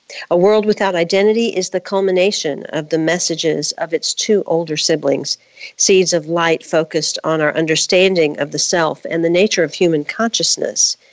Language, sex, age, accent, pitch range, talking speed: English, female, 50-69, American, 160-195 Hz, 165 wpm